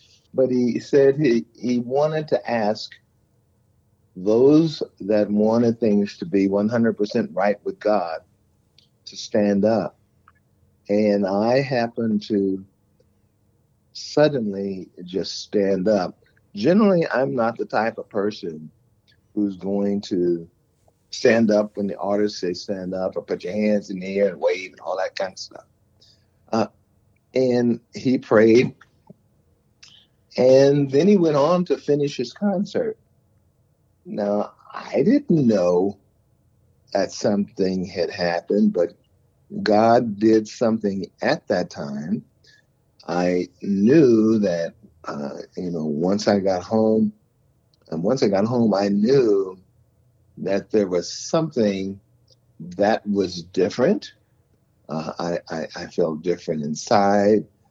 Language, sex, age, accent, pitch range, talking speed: English, male, 50-69, American, 100-120 Hz, 125 wpm